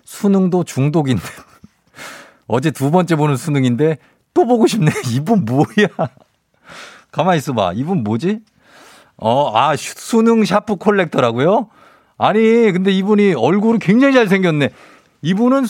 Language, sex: Korean, male